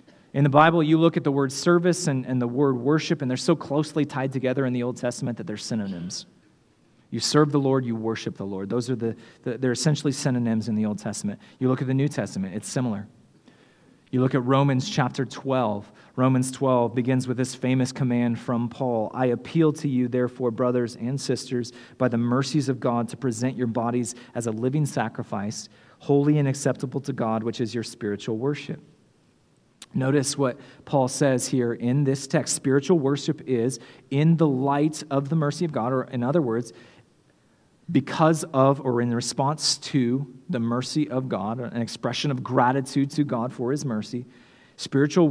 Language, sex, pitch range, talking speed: English, male, 120-145 Hz, 190 wpm